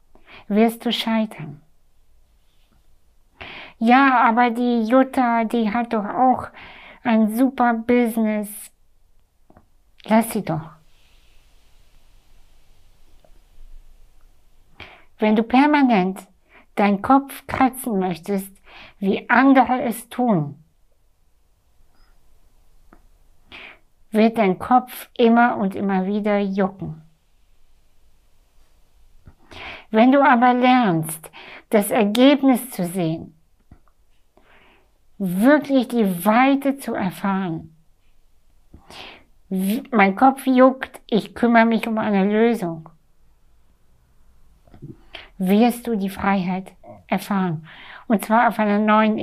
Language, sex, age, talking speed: German, female, 60-79, 85 wpm